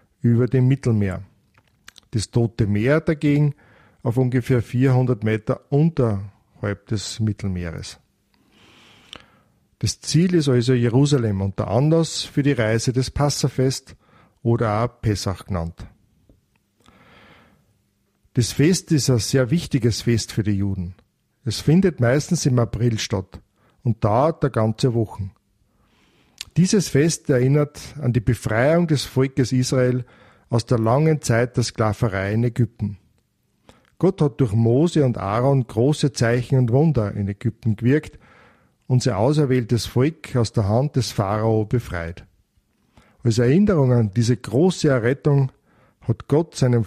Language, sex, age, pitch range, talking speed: German, male, 50-69, 110-140 Hz, 130 wpm